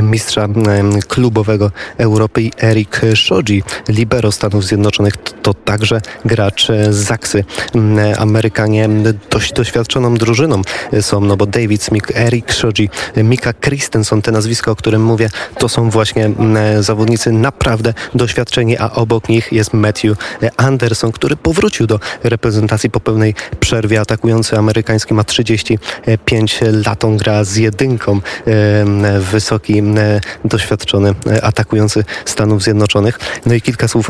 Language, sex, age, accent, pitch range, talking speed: Polish, male, 20-39, native, 105-115 Hz, 120 wpm